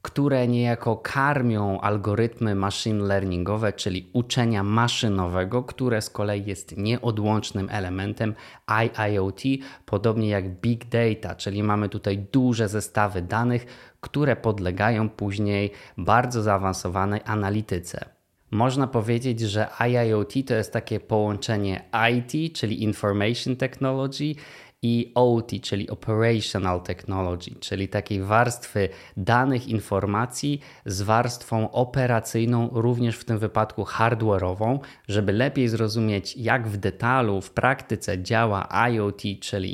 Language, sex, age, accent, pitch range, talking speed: Polish, male, 20-39, native, 100-120 Hz, 110 wpm